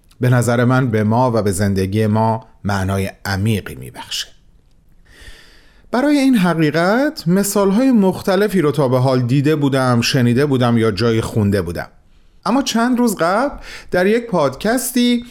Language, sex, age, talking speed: Persian, male, 40-59, 140 wpm